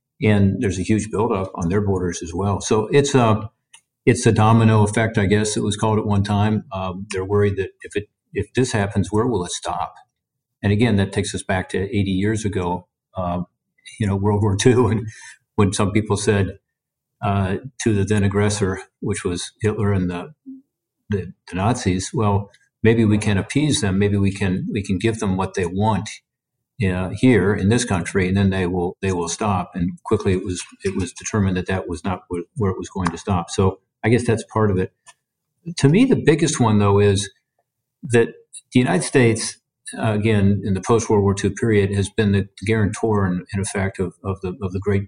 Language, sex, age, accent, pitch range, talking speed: English, male, 50-69, American, 95-115 Hz, 210 wpm